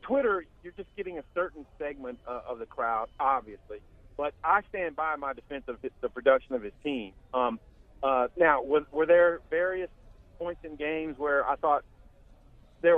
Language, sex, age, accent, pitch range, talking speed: English, male, 40-59, American, 125-170 Hz, 170 wpm